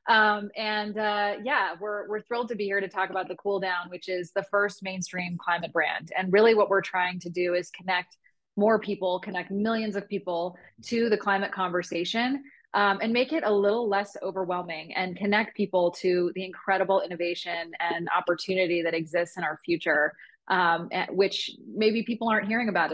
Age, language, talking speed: 20-39, English, 185 wpm